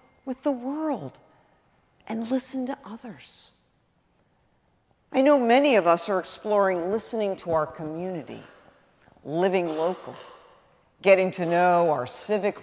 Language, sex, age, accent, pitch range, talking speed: English, female, 50-69, American, 155-220 Hz, 120 wpm